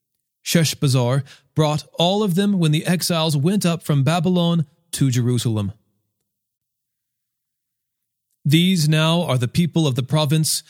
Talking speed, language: 125 wpm, English